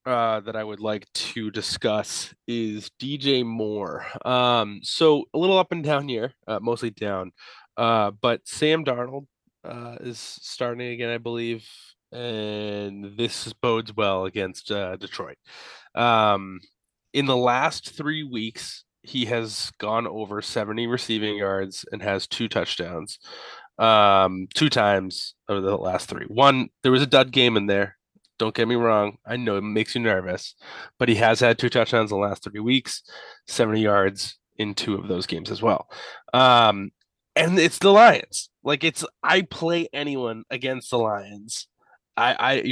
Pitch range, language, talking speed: 105-135 Hz, English, 160 wpm